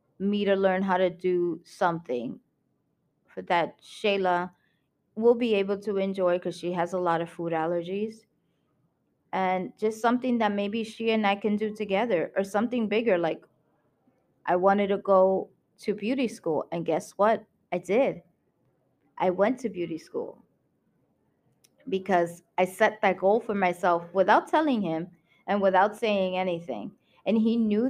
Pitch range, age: 175-210 Hz, 20-39